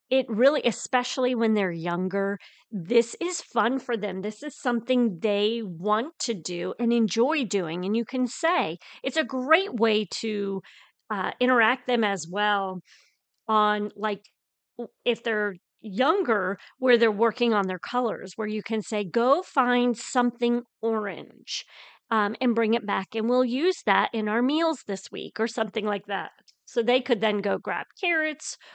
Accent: American